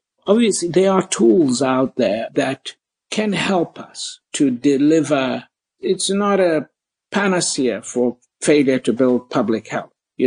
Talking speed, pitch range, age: 135 wpm, 130-170 Hz, 60-79